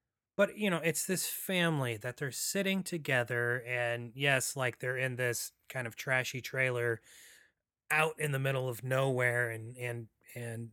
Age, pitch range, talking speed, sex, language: 30-49, 120-150 Hz, 160 wpm, male, English